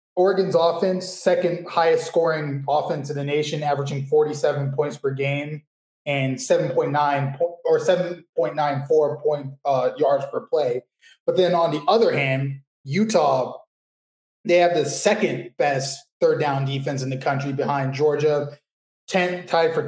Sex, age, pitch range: male, 20-39, 145-185 Hz